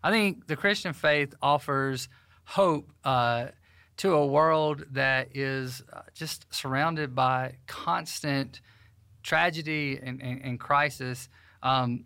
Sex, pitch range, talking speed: male, 125-150 Hz, 115 wpm